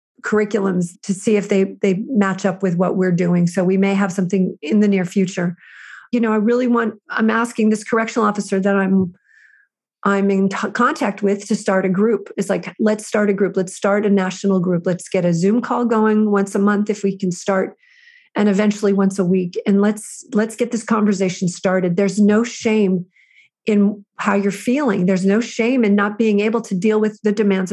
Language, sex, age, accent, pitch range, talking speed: English, female, 40-59, American, 195-230 Hz, 210 wpm